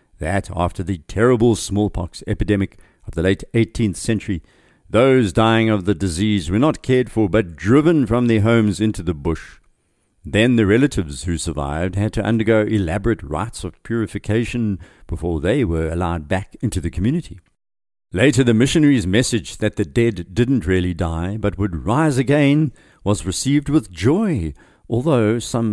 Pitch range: 85-110 Hz